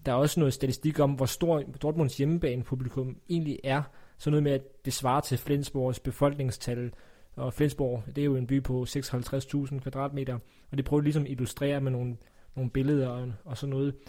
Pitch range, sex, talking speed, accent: 130-150 Hz, male, 195 wpm, native